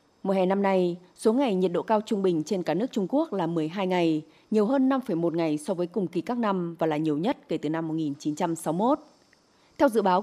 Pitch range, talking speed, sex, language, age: 165-220 Hz, 235 wpm, female, Vietnamese, 20-39